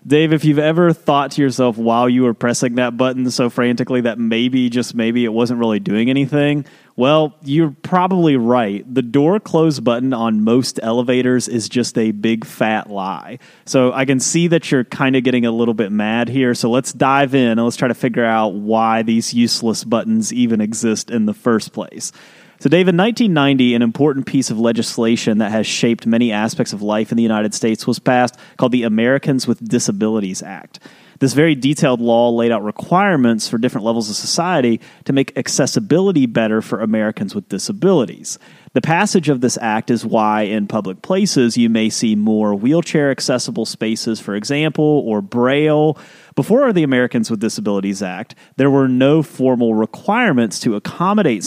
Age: 30-49